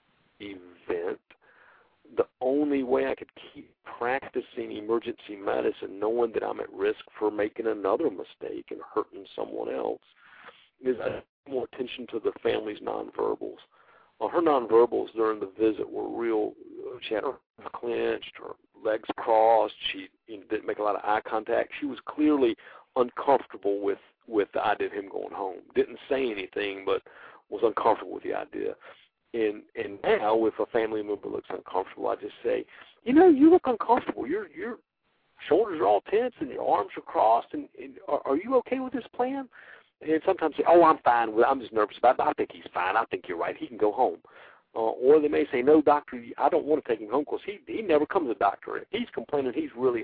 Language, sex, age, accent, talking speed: English, male, 50-69, American, 200 wpm